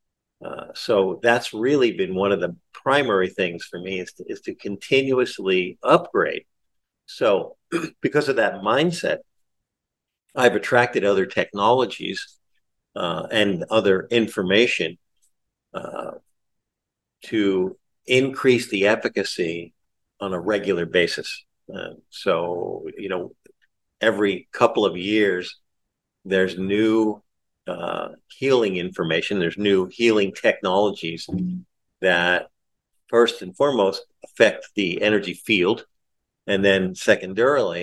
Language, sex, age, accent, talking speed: English, male, 50-69, American, 105 wpm